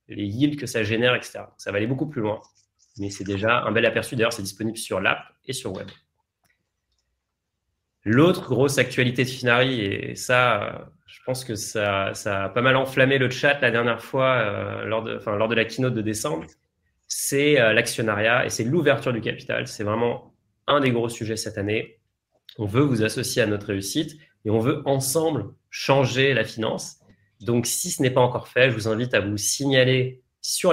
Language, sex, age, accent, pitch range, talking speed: French, male, 30-49, French, 110-130 Hz, 190 wpm